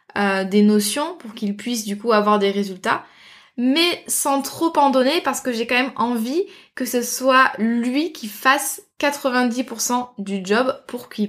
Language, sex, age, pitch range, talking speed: French, female, 20-39, 210-260 Hz, 175 wpm